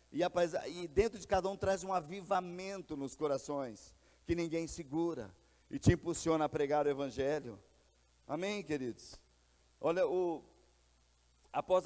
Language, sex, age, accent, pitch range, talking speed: Portuguese, male, 50-69, Brazilian, 160-195 Hz, 130 wpm